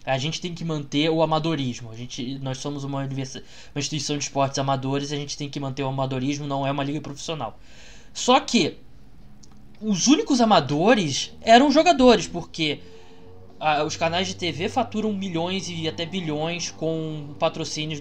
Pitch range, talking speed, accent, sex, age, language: 140-185 Hz, 165 wpm, Brazilian, male, 20-39, Portuguese